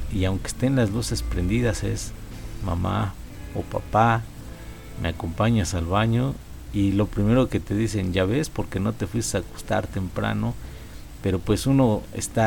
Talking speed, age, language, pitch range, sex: 160 wpm, 50-69, Spanish, 95-115 Hz, male